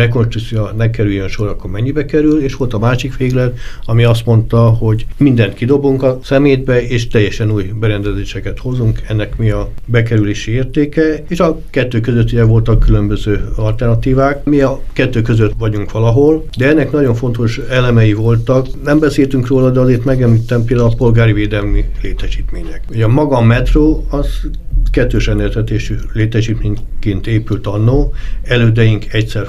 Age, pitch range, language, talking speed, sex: 60-79, 105-130 Hz, Hungarian, 150 wpm, male